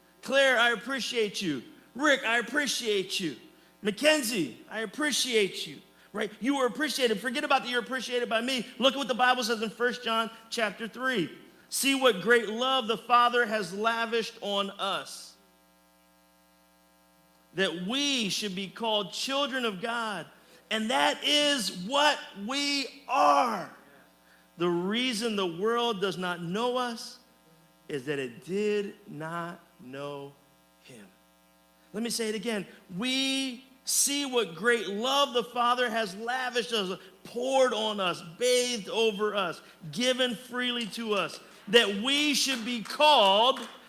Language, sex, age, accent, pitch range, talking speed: English, male, 40-59, American, 200-275 Hz, 140 wpm